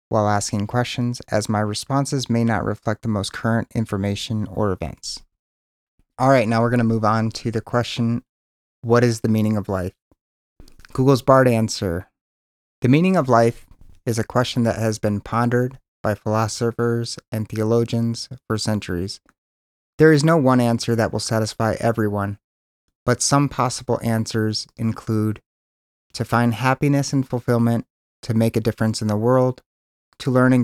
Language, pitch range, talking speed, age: English, 105-125 Hz, 160 wpm, 30-49